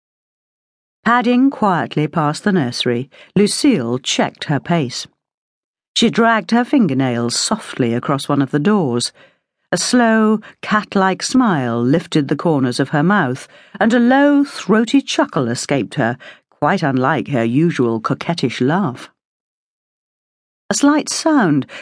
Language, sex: English, female